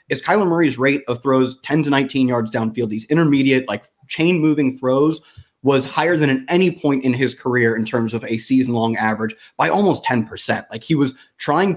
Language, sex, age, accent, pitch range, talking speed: English, male, 20-39, American, 120-160 Hz, 205 wpm